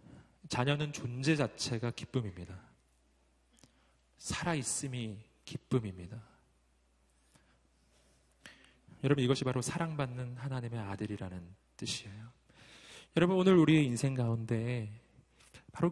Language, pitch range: Korean, 105-145 Hz